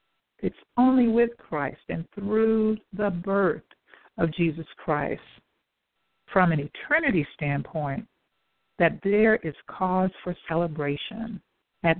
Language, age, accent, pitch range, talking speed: English, 60-79, American, 165-220 Hz, 110 wpm